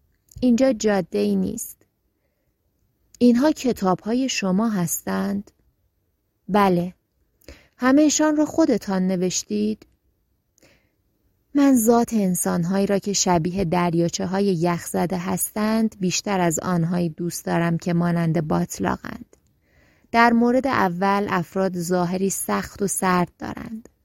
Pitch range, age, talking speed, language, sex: 175-205 Hz, 20-39, 100 wpm, Persian, female